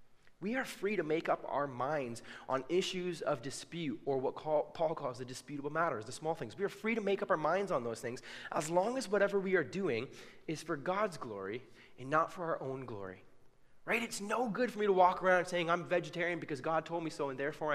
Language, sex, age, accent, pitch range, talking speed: English, male, 20-39, American, 145-205 Hz, 235 wpm